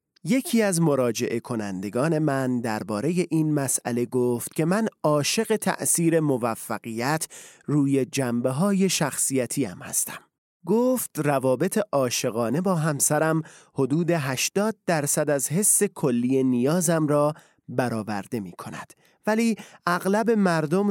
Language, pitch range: Persian, 130-175 Hz